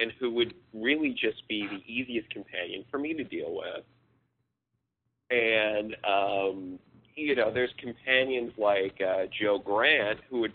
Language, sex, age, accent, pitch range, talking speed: English, male, 30-49, American, 95-130 Hz, 150 wpm